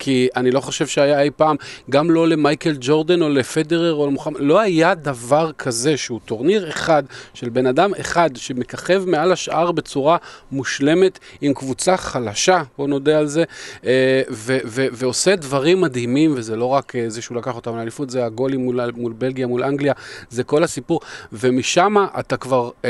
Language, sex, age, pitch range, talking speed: Hebrew, male, 40-59, 125-155 Hz, 175 wpm